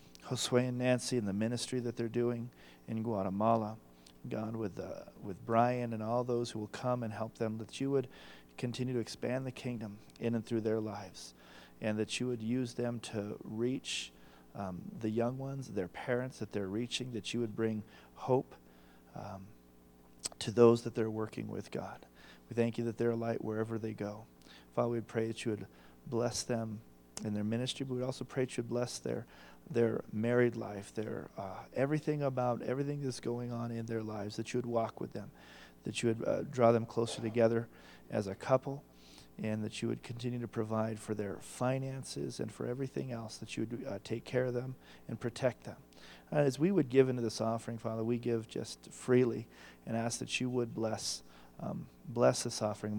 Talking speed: 200 wpm